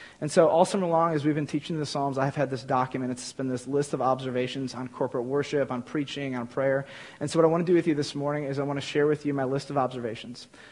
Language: English